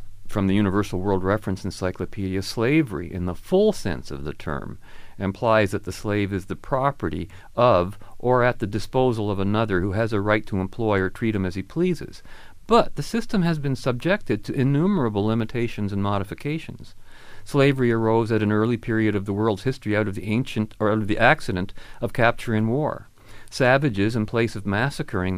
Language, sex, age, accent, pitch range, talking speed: English, male, 50-69, American, 100-120 Hz, 185 wpm